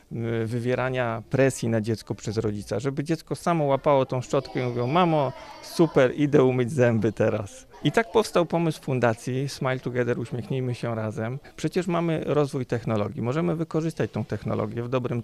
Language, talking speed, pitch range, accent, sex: Polish, 160 wpm, 110-135 Hz, native, male